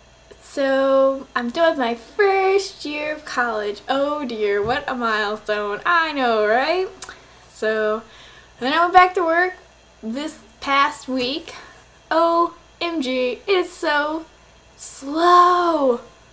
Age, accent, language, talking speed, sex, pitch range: 10-29, American, English, 120 wpm, female, 225-320 Hz